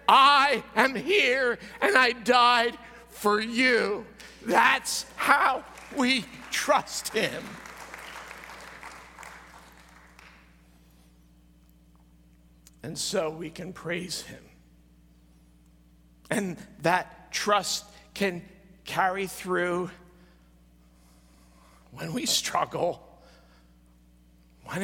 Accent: American